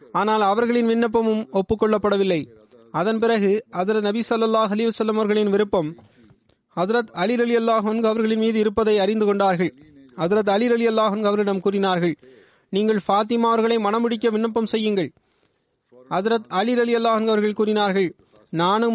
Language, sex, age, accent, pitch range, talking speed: Tamil, male, 30-49, native, 195-230 Hz, 115 wpm